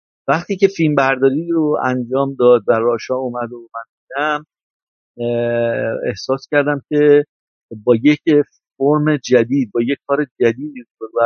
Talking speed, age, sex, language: 140 wpm, 50-69, male, Persian